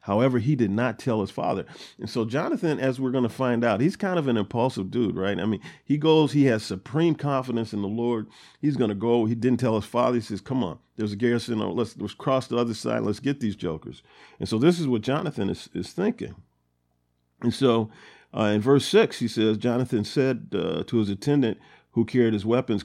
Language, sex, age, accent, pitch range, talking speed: English, male, 50-69, American, 110-135 Hz, 230 wpm